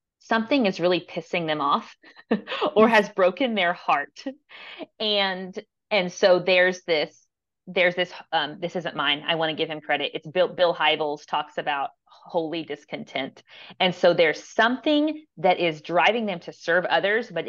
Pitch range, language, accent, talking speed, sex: 160-205 Hz, English, American, 165 wpm, female